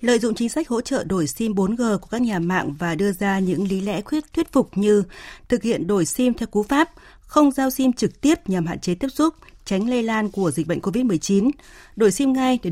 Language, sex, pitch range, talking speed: Vietnamese, female, 185-245 Hz, 240 wpm